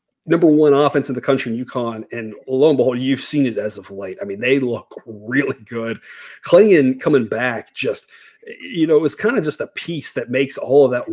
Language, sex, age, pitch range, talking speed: English, male, 30-49, 125-155 Hz, 225 wpm